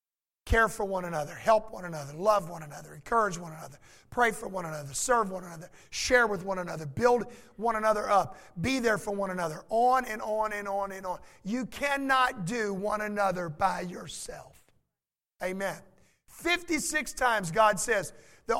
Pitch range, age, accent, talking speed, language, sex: 200-260 Hz, 50-69, American, 170 wpm, English, male